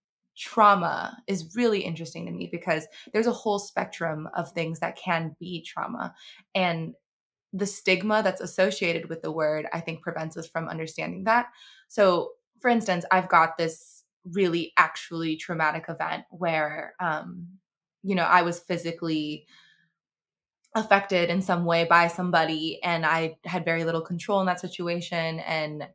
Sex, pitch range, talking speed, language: female, 165-195 Hz, 150 wpm, English